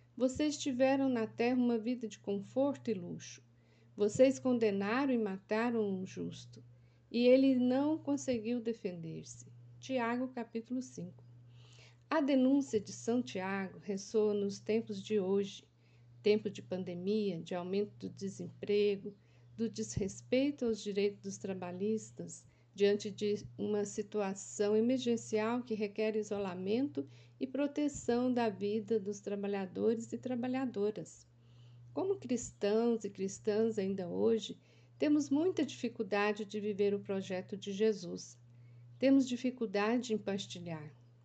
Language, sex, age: Portuguese, female, 50-69